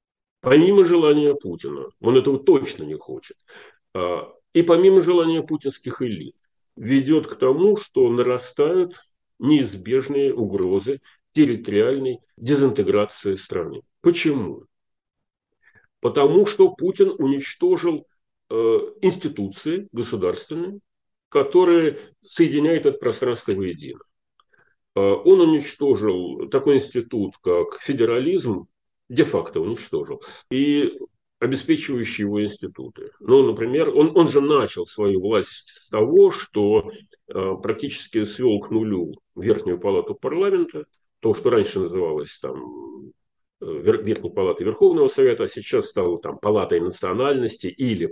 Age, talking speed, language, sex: 40-59, 105 wpm, English, male